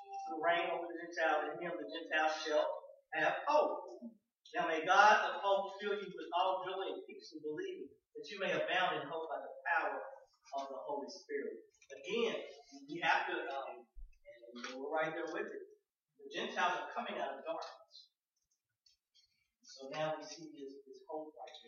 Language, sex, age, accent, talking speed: English, male, 40-59, American, 180 wpm